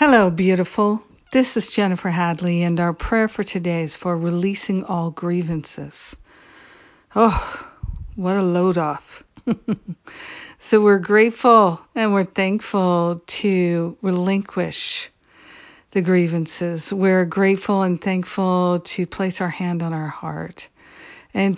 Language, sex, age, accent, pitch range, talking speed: English, female, 50-69, American, 175-200 Hz, 120 wpm